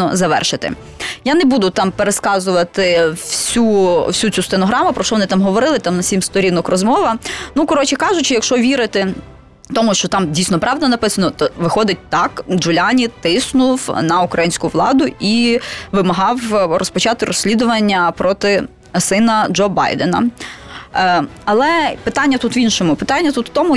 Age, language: 20-39, Ukrainian